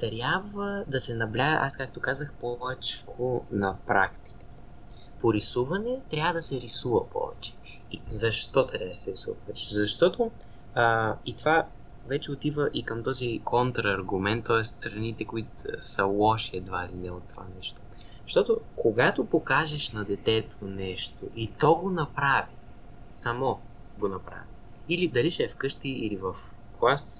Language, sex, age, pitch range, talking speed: Bulgarian, male, 20-39, 110-140 Hz, 145 wpm